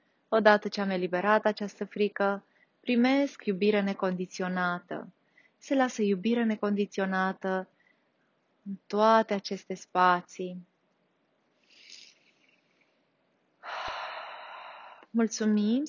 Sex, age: female, 30-49